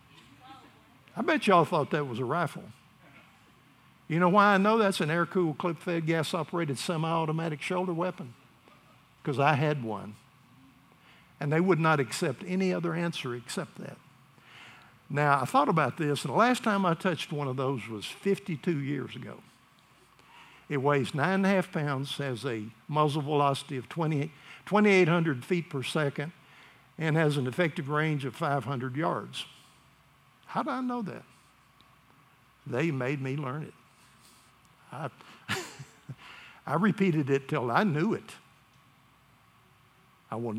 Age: 60-79